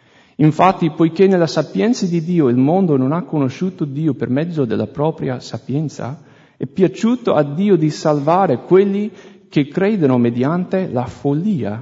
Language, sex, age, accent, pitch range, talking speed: English, male, 40-59, Italian, 120-170 Hz, 145 wpm